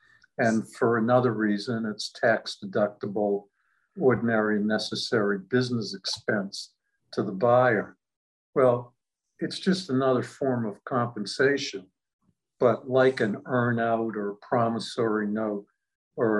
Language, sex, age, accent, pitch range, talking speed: English, male, 60-79, American, 105-125 Hz, 115 wpm